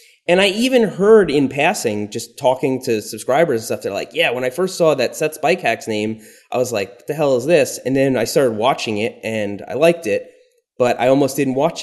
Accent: American